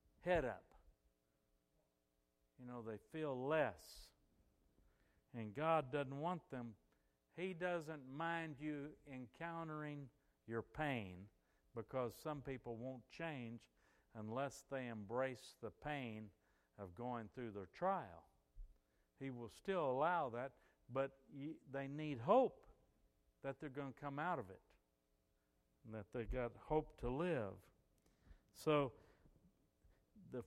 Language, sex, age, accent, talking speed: English, male, 60-79, American, 120 wpm